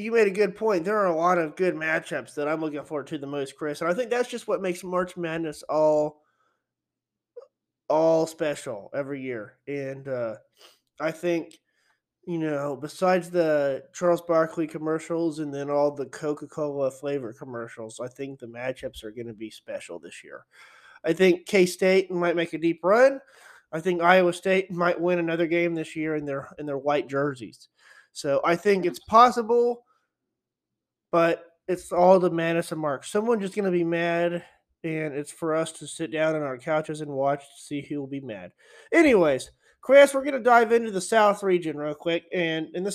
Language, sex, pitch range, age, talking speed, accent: English, male, 150-190 Hz, 20-39, 190 wpm, American